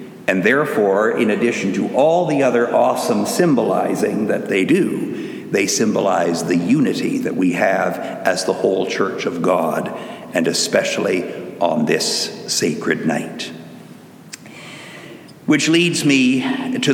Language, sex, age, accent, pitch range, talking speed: English, male, 60-79, American, 120-190 Hz, 130 wpm